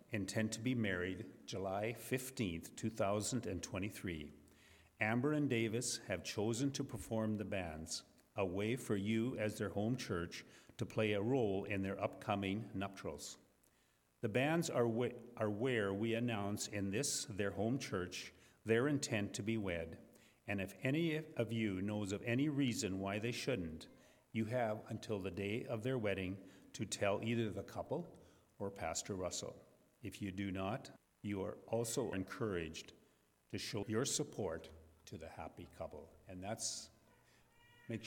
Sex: male